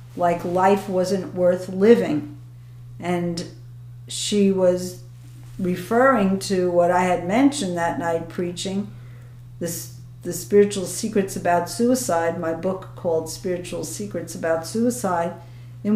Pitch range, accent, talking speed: 120-200 Hz, American, 115 wpm